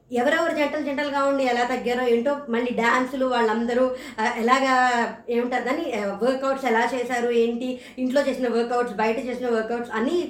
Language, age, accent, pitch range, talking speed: Telugu, 20-39, native, 245-315 Hz, 135 wpm